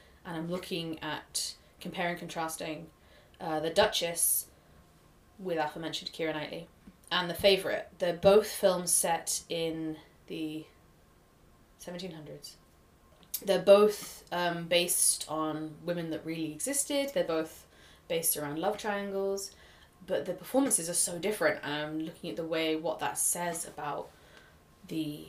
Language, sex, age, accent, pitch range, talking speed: English, female, 20-39, British, 155-185 Hz, 130 wpm